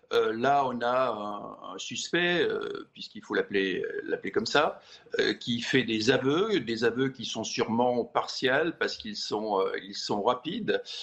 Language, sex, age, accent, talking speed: French, male, 50-69, French, 180 wpm